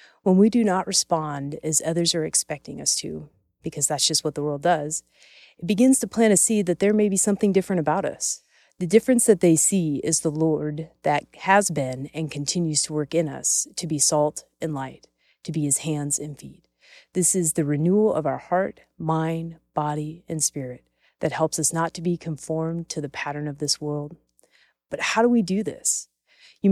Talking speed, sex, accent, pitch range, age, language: 205 wpm, female, American, 150-185 Hz, 30-49, English